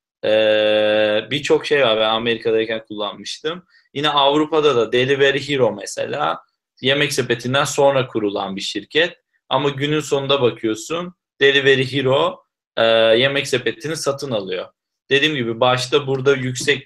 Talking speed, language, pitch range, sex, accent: 125 wpm, Turkish, 115-155 Hz, male, native